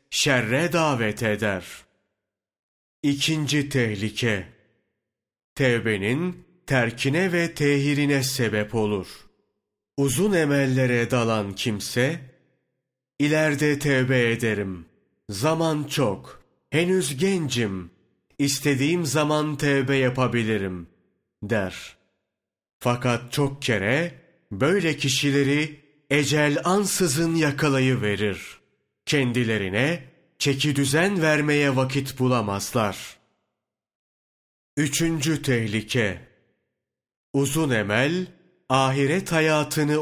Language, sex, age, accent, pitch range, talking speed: Turkish, male, 30-49, native, 120-155 Hz, 70 wpm